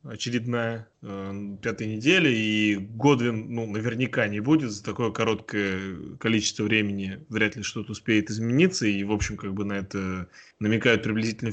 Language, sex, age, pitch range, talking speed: Russian, male, 20-39, 105-125 Hz, 150 wpm